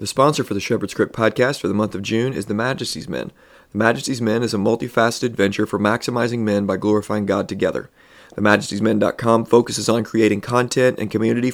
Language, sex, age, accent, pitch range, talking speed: English, male, 30-49, American, 100-115 Hz, 190 wpm